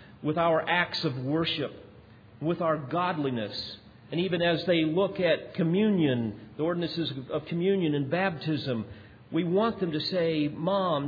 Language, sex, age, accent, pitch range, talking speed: English, male, 50-69, American, 130-170 Hz, 145 wpm